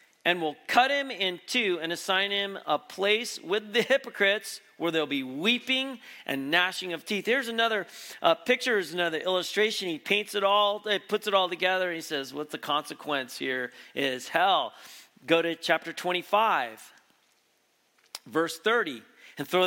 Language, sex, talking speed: English, male, 170 wpm